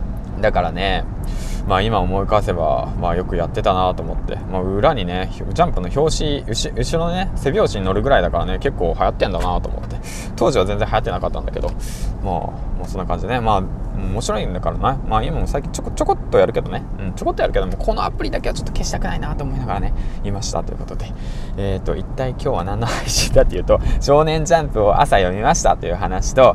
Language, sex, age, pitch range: Japanese, male, 20-39, 95-125 Hz